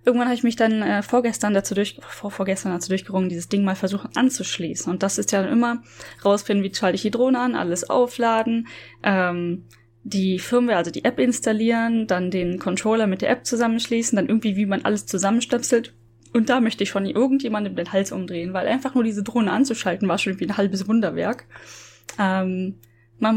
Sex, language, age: female, German, 10-29